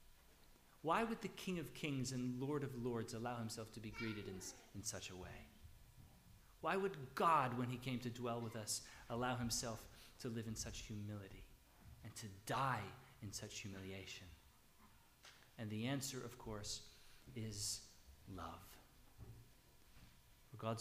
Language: English